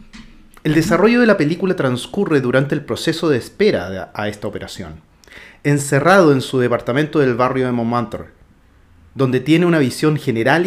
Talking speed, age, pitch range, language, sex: 150 wpm, 40-59, 115-165 Hz, Spanish, male